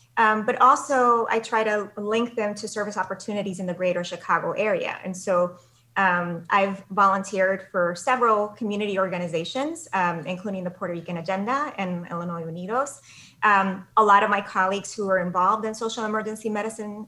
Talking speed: 165 wpm